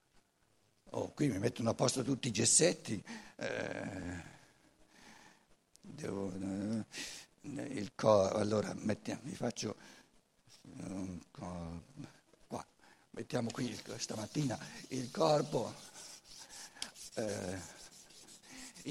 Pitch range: 115-190 Hz